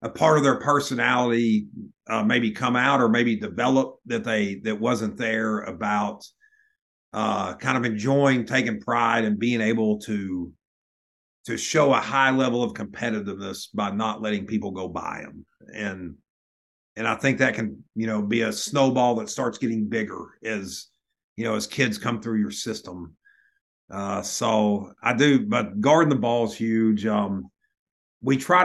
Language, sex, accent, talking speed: English, male, American, 165 wpm